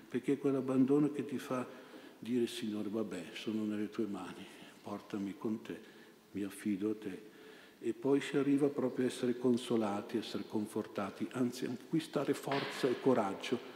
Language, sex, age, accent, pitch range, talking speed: Italian, male, 60-79, native, 100-125 Hz, 160 wpm